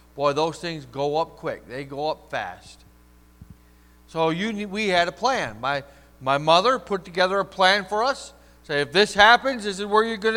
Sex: male